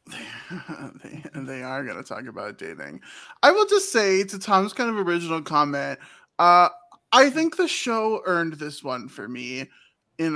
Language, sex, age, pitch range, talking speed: English, male, 20-39, 155-220 Hz, 160 wpm